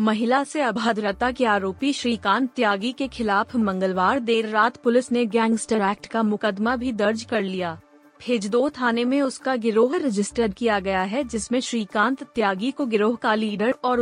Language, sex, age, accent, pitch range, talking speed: Hindi, female, 30-49, native, 210-250 Hz, 165 wpm